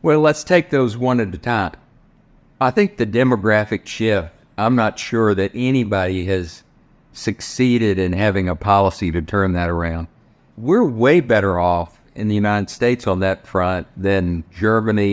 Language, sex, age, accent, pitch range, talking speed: English, male, 50-69, American, 95-125 Hz, 165 wpm